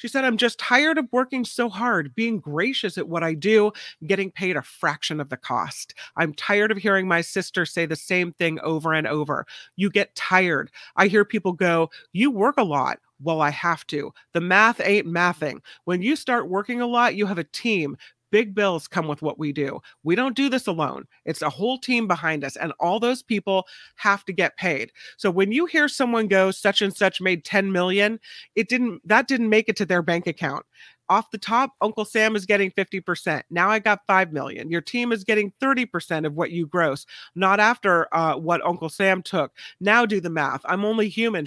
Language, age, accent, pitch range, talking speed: English, 30-49, American, 165-215 Hz, 215 wpm